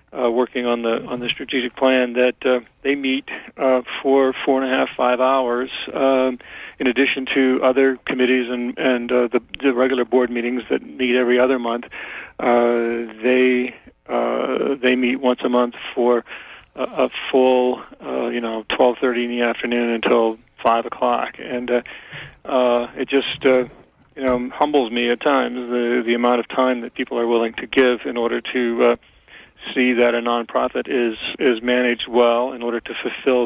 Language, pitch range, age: English, 120-130 Hz, 40-59